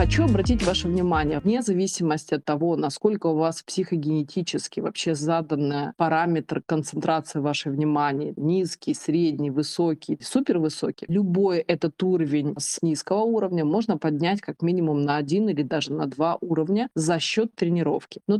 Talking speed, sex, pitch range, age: 140 wpm, female, 155-195 Hz, 20-39